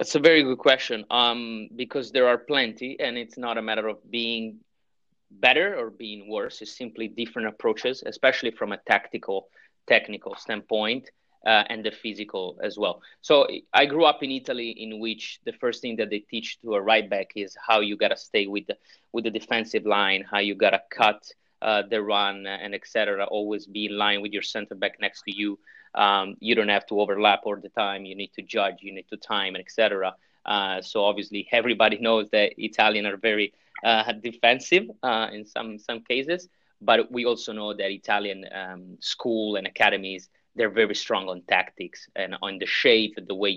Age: 30-49